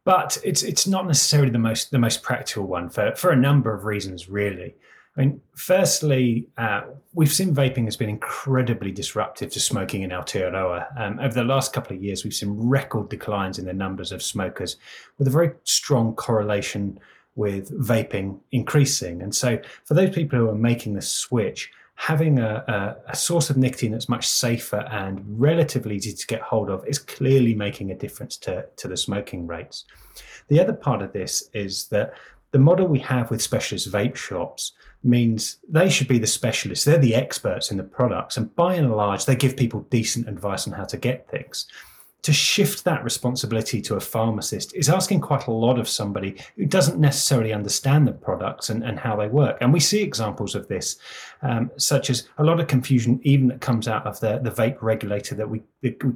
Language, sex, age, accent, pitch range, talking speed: English, male, 30-49, British, 105-140 Hz, 195 wpm